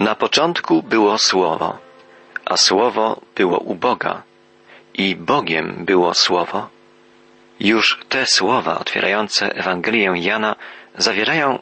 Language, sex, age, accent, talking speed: Polish, male, 40-59, native, 105 wpm